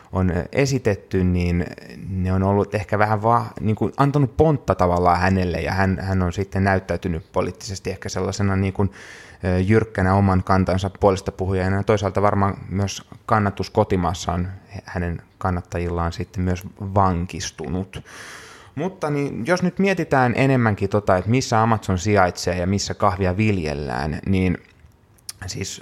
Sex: male